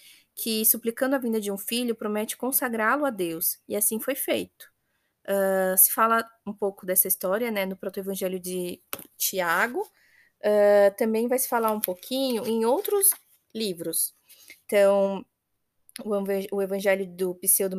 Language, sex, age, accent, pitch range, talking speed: Portuguese, female, 20-39, Brazilian, 195-230 Hz, 135 wpm